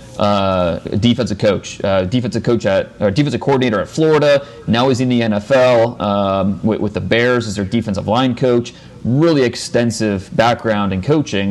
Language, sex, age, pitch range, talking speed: English, male, 30-49, 105-135 Hz, 165 wpm